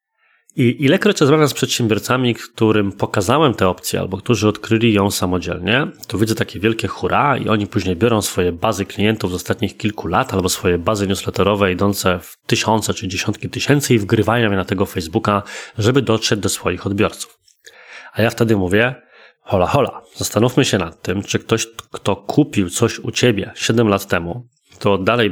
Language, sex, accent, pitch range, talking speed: Polish, male, native, 100-125 Hz, 175 wpm